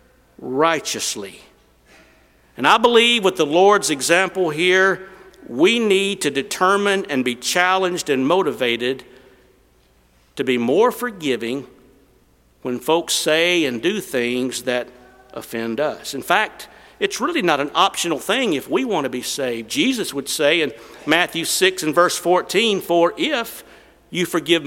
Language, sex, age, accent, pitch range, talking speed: English, male, 50-69, American, 125-185 Hz, 140 wpm